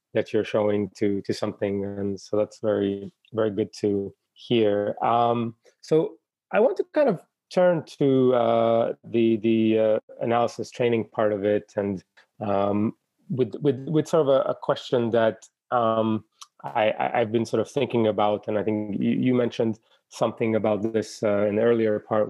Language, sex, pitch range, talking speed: English, male, 105-120 Hz, 175 wpm